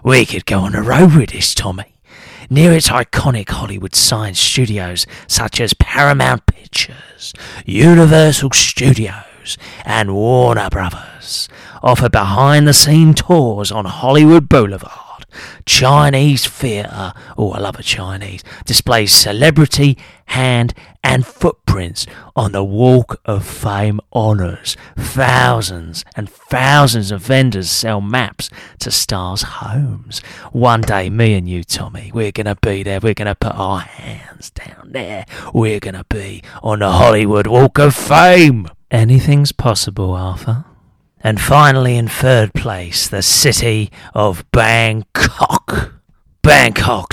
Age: 30-49